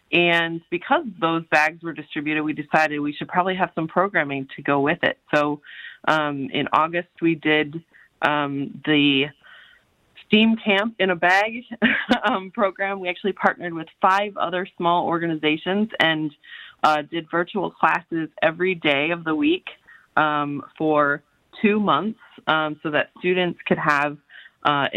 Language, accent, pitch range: English, American, 150-185 Hz